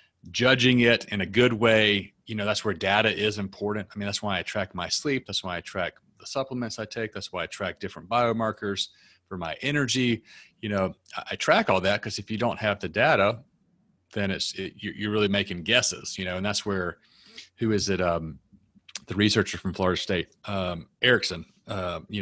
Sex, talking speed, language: male, 205 wpm, English